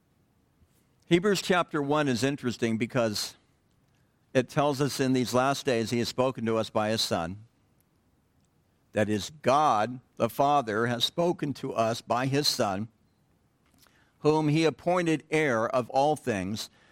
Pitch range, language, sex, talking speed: 105-135 Hz, English, male, 140 wpm